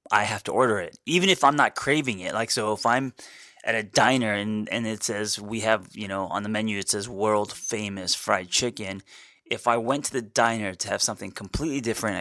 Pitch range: 100-115 Hz